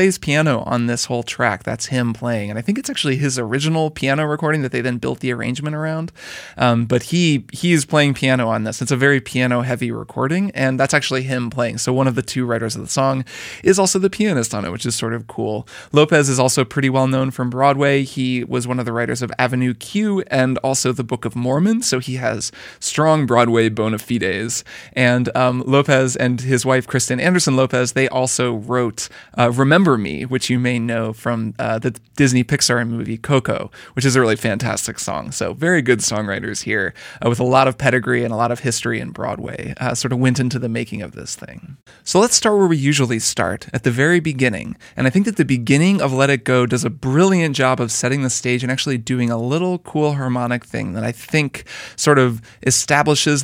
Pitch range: 120-140 Hz